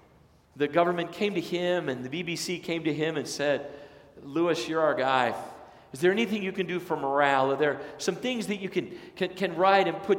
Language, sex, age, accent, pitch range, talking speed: English, male, 40-59, American, 150-195 Hz, 220 wpm